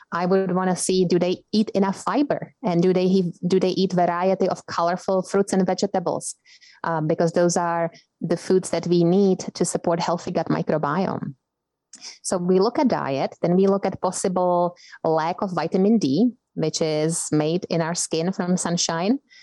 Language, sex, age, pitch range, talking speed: English, female, 20-39, 170-190 Hz, 175 wpm